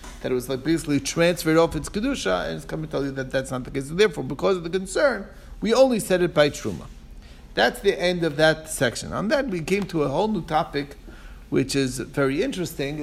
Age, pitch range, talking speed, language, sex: 50-69, 130-165 Hz, 235 wpm, English, male